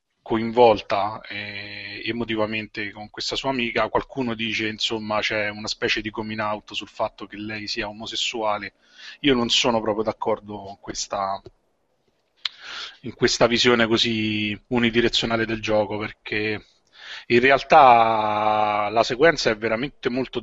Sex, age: male, 30-49